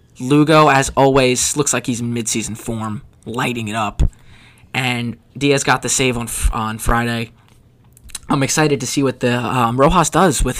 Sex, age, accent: male, 20-39, American